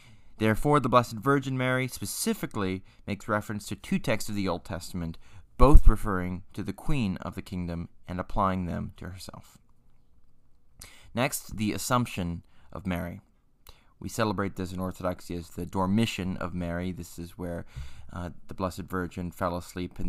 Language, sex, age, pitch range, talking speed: English, male, 30-49, 90-120 Hz, 160 wpm